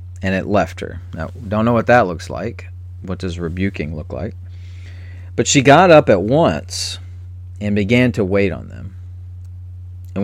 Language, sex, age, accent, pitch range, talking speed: English, male, 40-59, American, 90-110 Hz, 170 wpm